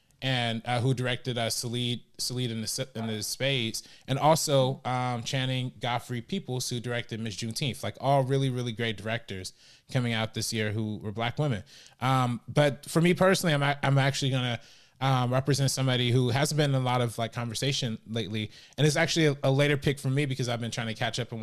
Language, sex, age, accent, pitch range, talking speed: English, male, 20-39, American, 115-135 Hz, 215 wpm